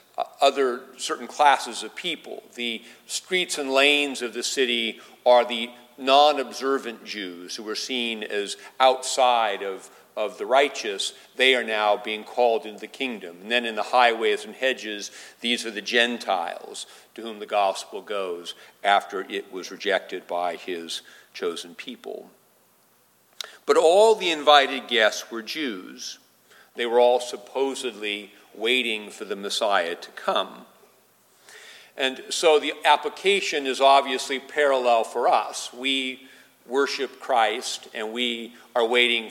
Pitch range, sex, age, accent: 115-135 Hz, male, 50-69, American